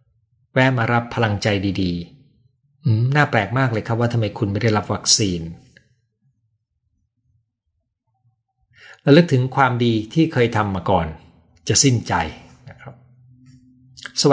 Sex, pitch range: male, 95-130 Hz